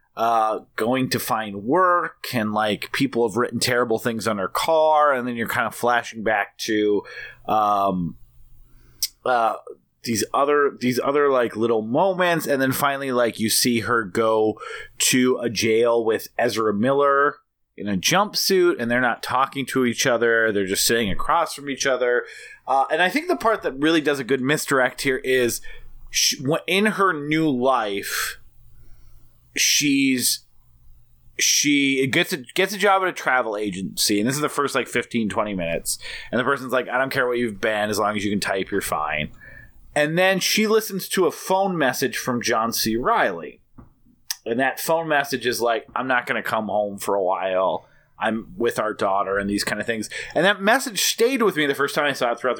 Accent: American